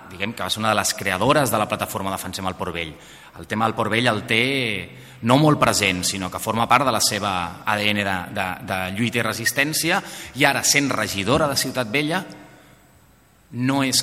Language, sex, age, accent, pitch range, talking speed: English, male, 30-49, Spanish, 95-125 Hz, 205 wpm